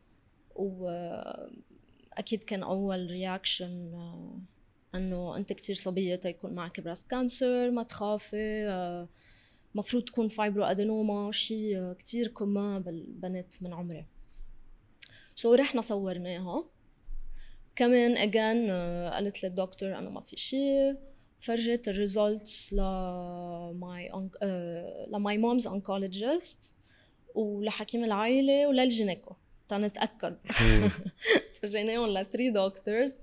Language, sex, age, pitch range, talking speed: Arabic, female, 20-39, 185-235 Hz, 90 wpm